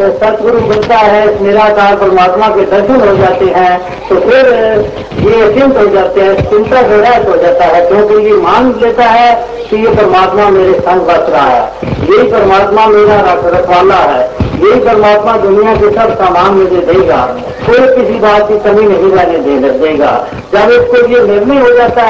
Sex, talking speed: female, 180 wpm